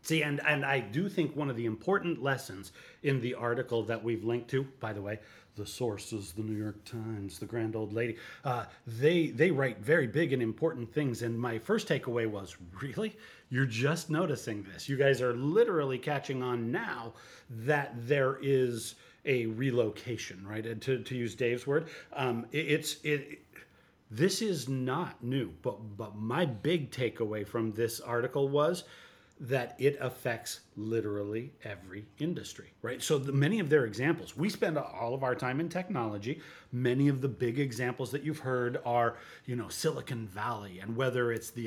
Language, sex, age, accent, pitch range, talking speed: English, male, 30-49, American, 115-140 Hz, 180 wpm